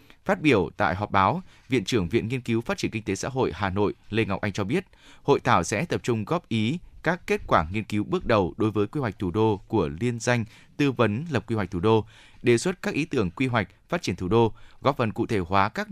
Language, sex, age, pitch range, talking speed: Vietnamese, male, 20-39, 105-125 Hz, 265 wpm